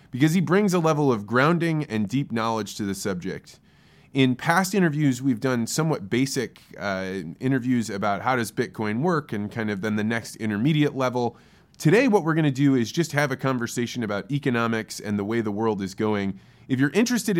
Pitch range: 110-145 Hz